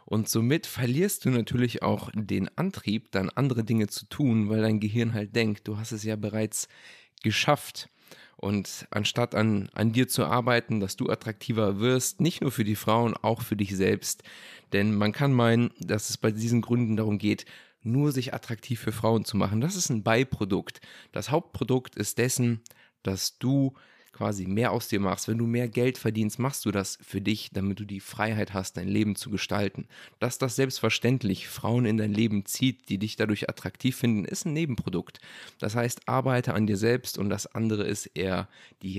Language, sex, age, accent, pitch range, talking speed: German, male, 30-49, German, 105-120 Hz, 190 wpm